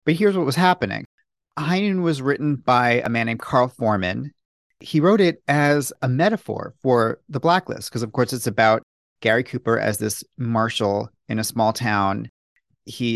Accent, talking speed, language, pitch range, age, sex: American, 175 wpm, English, 110-145 Hz, 40-59, male